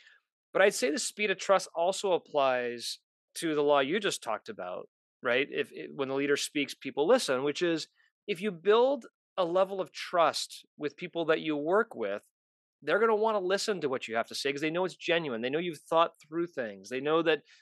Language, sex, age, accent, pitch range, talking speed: English, male, 30-49, American, 145-195 Hz, 225 wpm